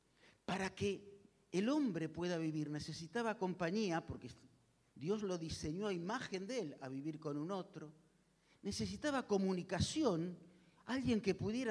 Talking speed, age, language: 135 wpm, 50-69, Spanish